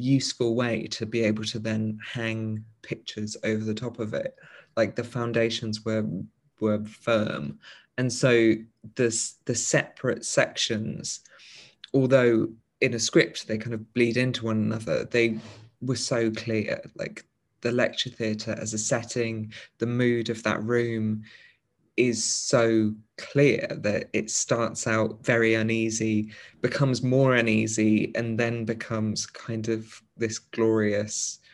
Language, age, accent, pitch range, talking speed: English, 20-39, British, 110-120 Hz, 135 wpm